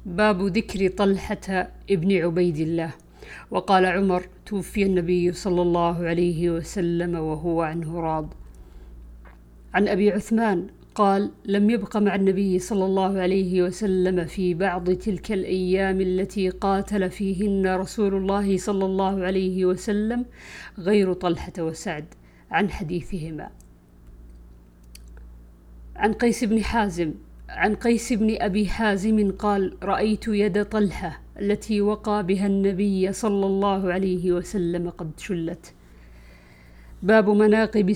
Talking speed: 115 wpm